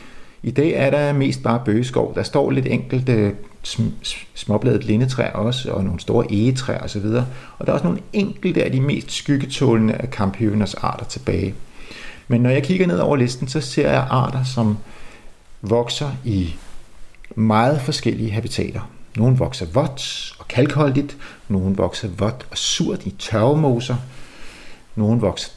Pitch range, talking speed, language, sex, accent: 105-130 Hz, 155 wpm, Danish, male, native